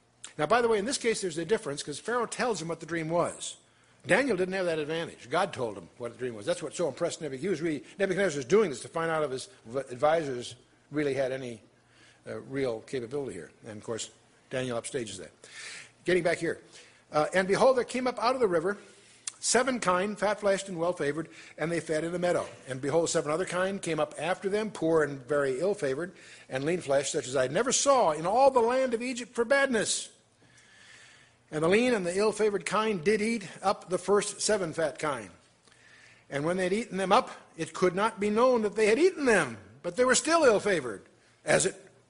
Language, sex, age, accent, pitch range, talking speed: English, male, 60-79, American, 140-215 Hz, 210 wpm